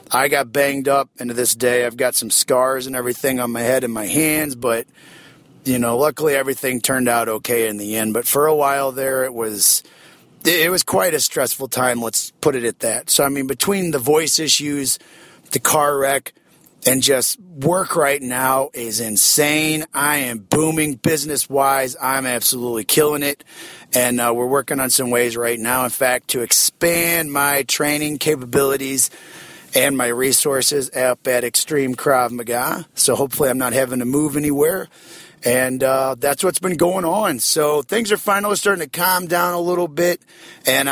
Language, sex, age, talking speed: English, male, 30-49, 185 wpm